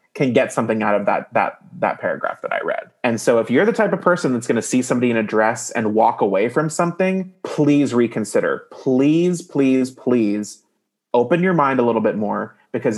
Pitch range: 110-150 Hz